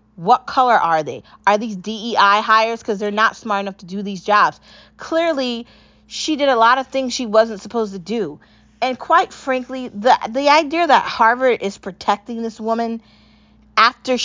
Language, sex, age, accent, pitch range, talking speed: English, female, 30-49, American, 190-235 Hz, 175 wpm